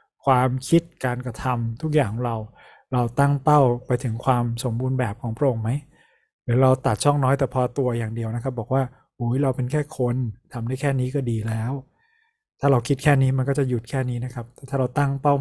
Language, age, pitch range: Thai, 20-39, 120-145 Hz